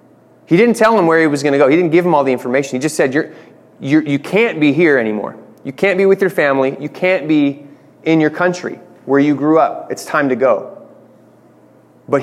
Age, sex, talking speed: 30-49, male, 235 wpm